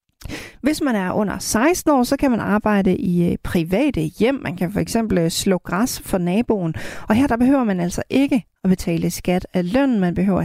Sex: female